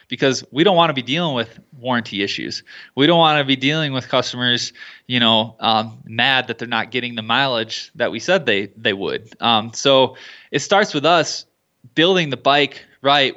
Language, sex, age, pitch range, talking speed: English, male, 20-39, 115-135 Hz, 195 wpm